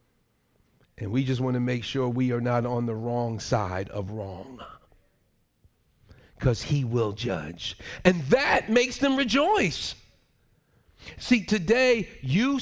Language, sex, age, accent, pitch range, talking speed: English, male, 40-59, American, 130-195 Hz, 135 wpm